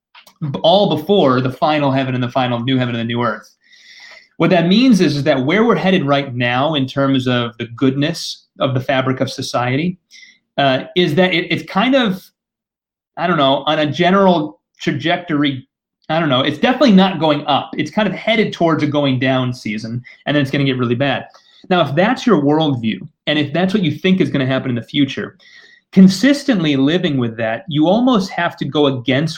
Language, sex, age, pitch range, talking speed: English, male, 30-49, 135-185 Hz, 210 wpm